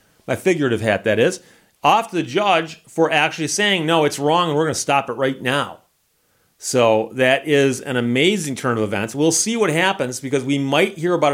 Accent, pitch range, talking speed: American, 125-160 Hz, 210 wpm